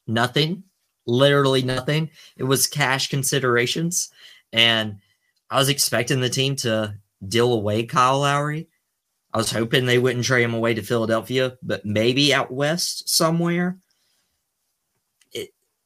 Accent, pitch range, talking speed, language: American, 105-140 Hz, 130 wpm, English